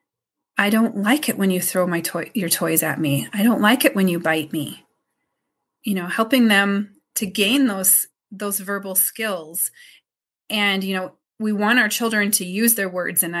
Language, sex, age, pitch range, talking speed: English, female, 30-49, 190-225 Hz, 195 wpm